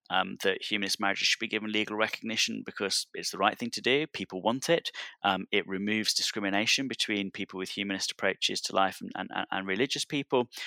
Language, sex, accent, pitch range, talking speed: English, male, British, 95-115 Hz, 195 wpm